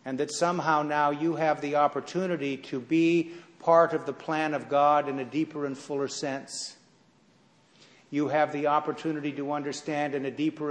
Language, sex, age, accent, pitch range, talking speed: English, male, 50-69, American, 140-170 Hz, 175 wpm